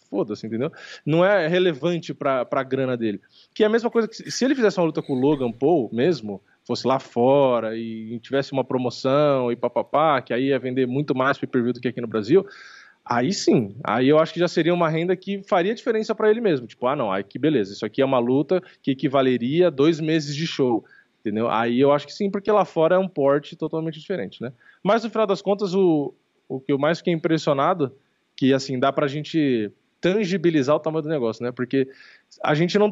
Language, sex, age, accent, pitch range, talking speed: Portuguese, male, 20-39, Brazilian, 125-180 Hz, 225 wpm